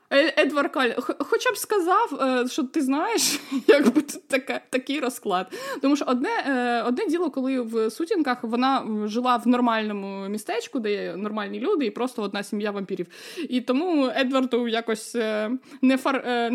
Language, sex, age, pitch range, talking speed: Ukrainian, female, 20-39, 225-290 Hz, 140 wpm